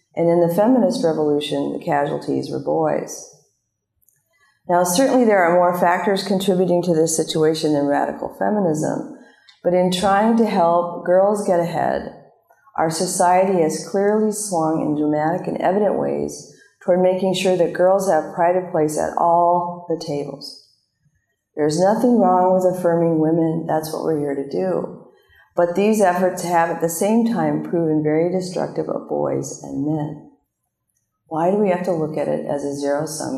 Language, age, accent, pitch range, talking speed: English, 50-69, American, 150-185 Hz, 165 wpm